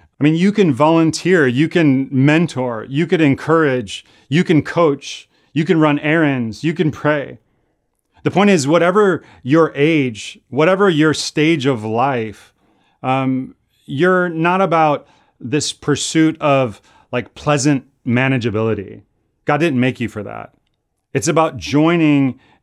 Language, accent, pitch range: English, American, 120-155 Hz